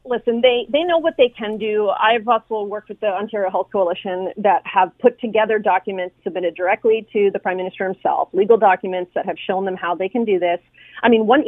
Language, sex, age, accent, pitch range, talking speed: English, female, 40-59, American, 205-255 Hz, 220 wpm